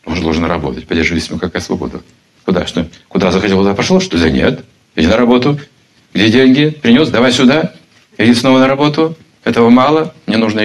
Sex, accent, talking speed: male, native, 185 wpm